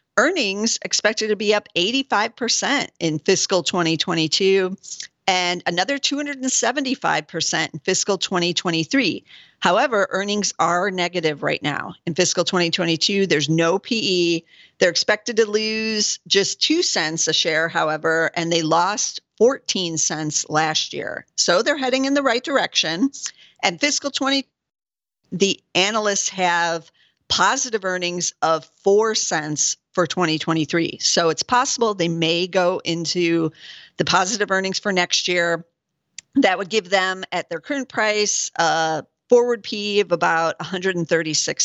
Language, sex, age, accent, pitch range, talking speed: English, female, 50-69, American, 165-210 Hz, 130 wpm